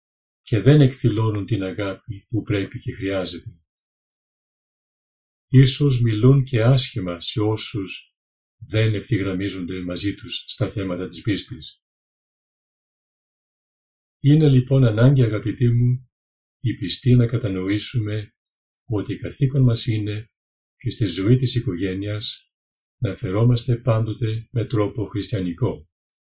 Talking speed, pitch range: 105 wpm, 95-125 Hz